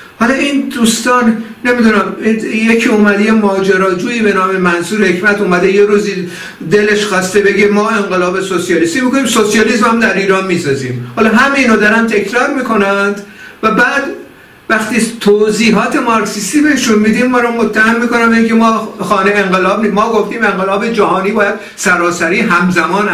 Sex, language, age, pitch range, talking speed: male, Persian, 50-69, 175-220 Hz, 140 wpm